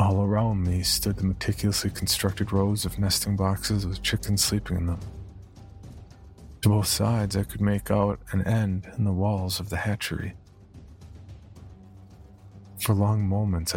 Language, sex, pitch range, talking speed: English, male, 90-100 Hz, 150 wpm